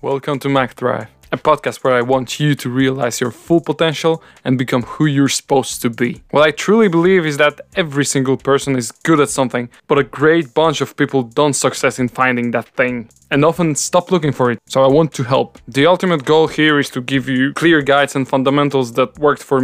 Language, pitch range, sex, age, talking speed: English, 120-150 Hz, male, 20-39, 220 wpm